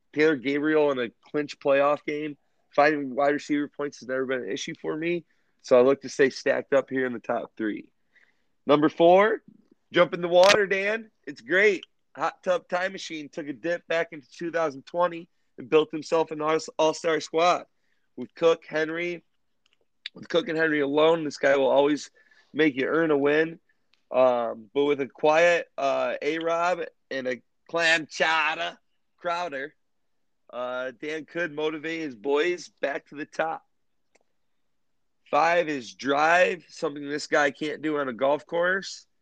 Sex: male